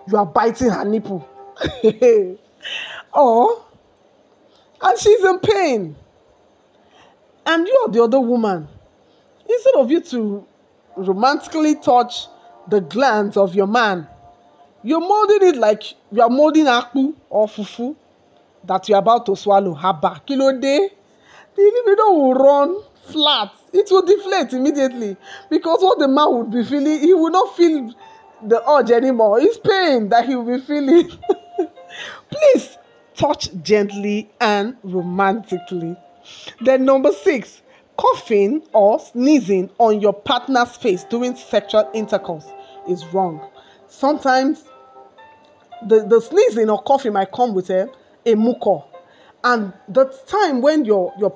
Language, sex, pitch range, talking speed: English, male, 200-300 Hz, 135 wpm